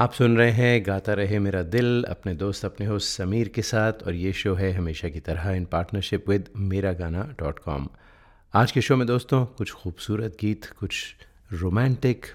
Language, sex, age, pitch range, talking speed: Hindi, male, 30-49, 90-110 Hz, 190 wpm